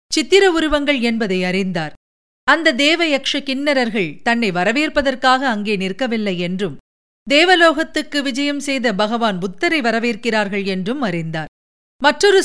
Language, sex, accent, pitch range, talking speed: Tamil, female, native, 205-290 Hz, 100 wpm